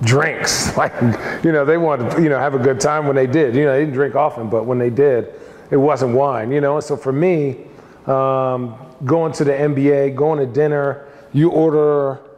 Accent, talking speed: American, 215 wpm